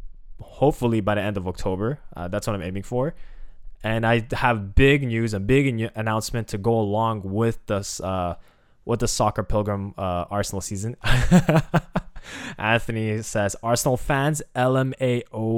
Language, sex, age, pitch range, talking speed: English, male, 10-29, 100-125 Hz, 150 wpm